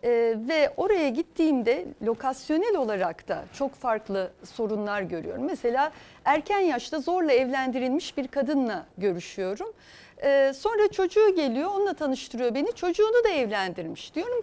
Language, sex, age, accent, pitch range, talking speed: Turkish, female, 60-79, native, 230-345 Hz, 125 wpm